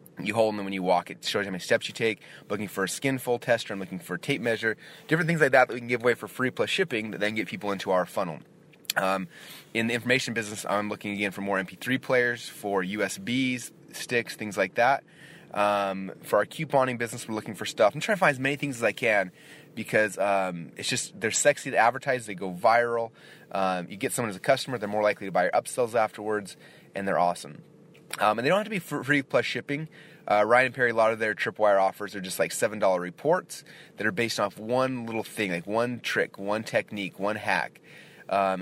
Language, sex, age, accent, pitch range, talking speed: English, male, 30-49, American, 100-125 Hz, 235 wpm